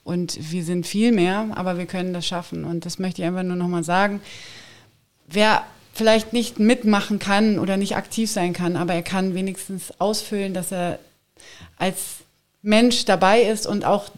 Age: 30-49